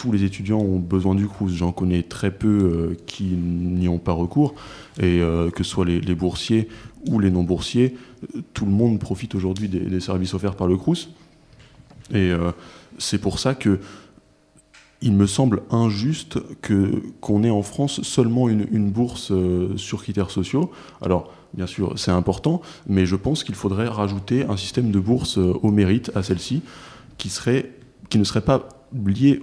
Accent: French